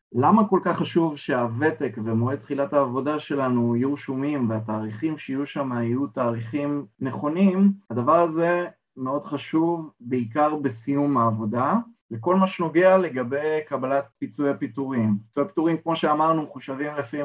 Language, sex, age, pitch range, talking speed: Hebrew, male, 30-49, 120-160 Hz, 130 wpm